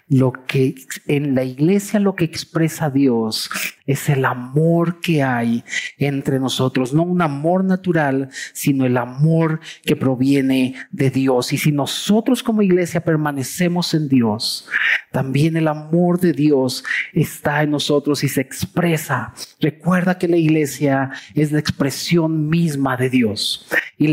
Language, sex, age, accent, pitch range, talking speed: Spanish, male, 40-59, Mexican, 145-195 Hz, 140 wpm